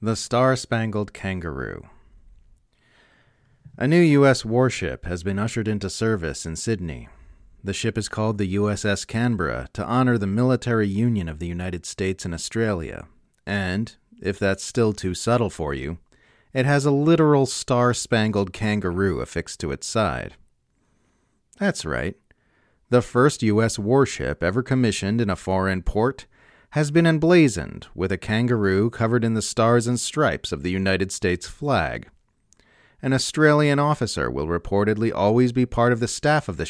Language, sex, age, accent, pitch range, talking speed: English, male, 30-49, American, 95-125 Hz, 150 wpm